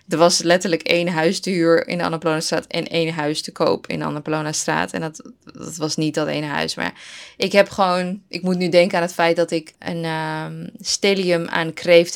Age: 20-39